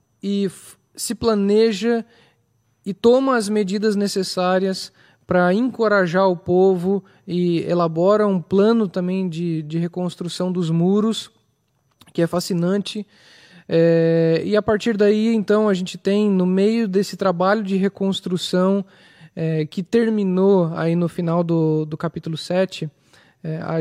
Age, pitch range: 20-39, 165-205 Hz